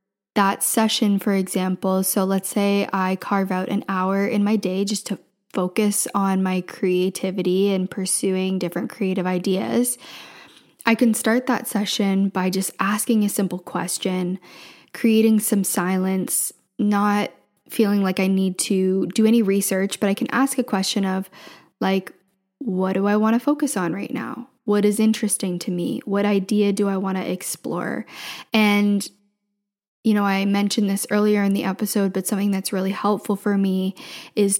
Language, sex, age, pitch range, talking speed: English, female, 10-29, 190-215 Hz, 165 wpm